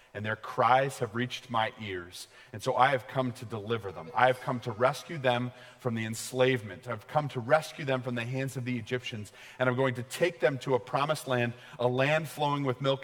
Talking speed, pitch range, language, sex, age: 230 wpm, 120-125 Hz, English, male, 40-59